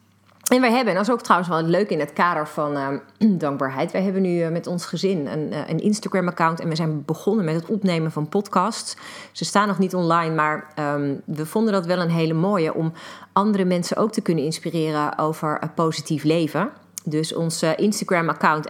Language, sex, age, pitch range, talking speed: Dutch, female, 30-49, 150-185 Hz, 200 wpm